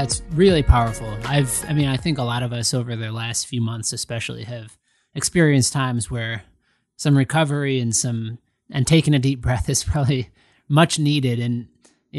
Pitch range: 120-145 Hz